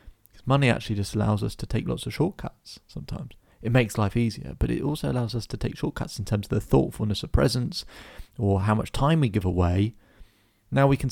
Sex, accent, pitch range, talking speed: male, British, 100-115 Hz, 215 wpm